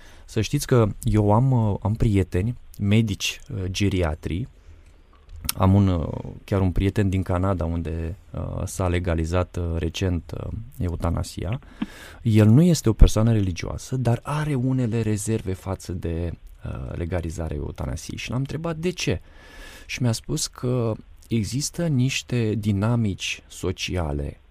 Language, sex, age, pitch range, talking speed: Romanian, male, 20-39, 85-115 Hz, 125 wpm